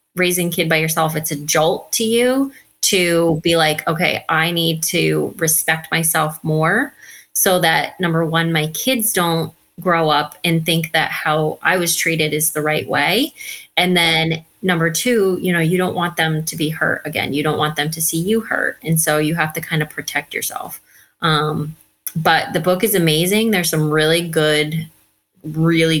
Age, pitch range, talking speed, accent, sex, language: 20-39, 155-170 Hz, 190 wpm, American, female, English